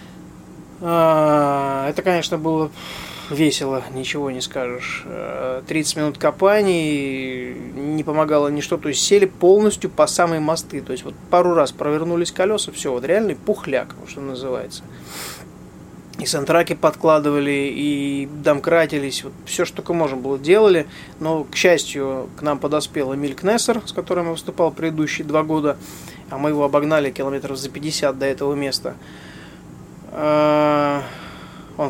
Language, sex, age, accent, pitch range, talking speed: Russian, male, 20-39, native, 140-165 Hz, 135 wpm